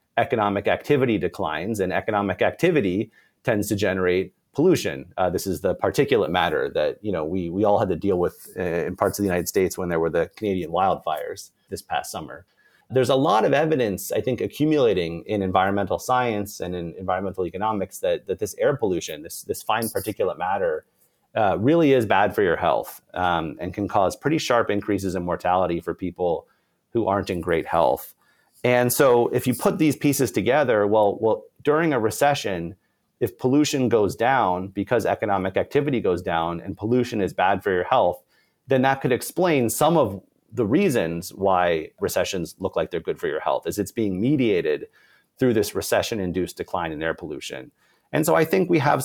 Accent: American